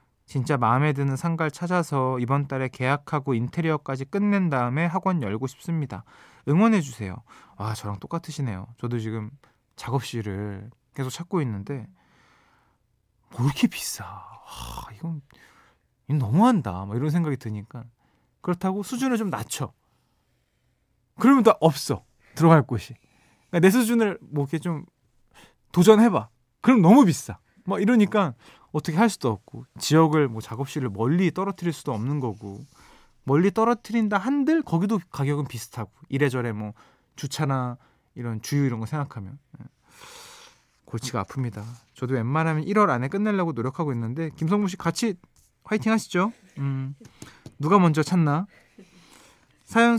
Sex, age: male, 20-39